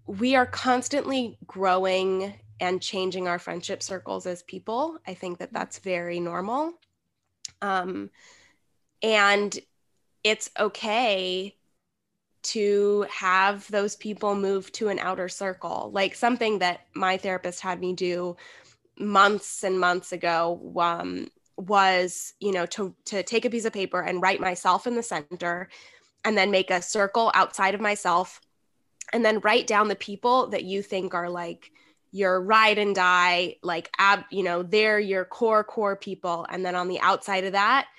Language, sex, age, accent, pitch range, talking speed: English, female, 10-29, American, 185-215 Hz, 155 wpm